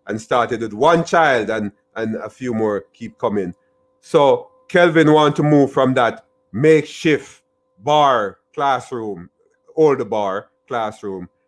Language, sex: English, male